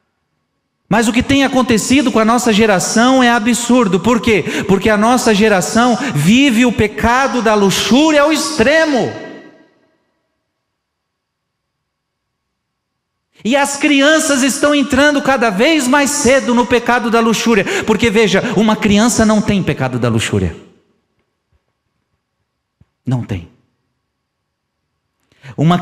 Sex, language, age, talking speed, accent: male, Portuguese, 50-69, 115 wpm, Brazilian